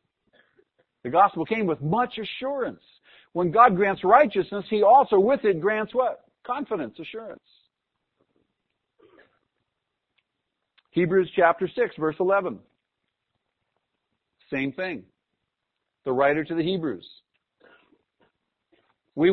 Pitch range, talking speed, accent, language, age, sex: 140-200 Hz, 95 wpm, American, English, 60-79, male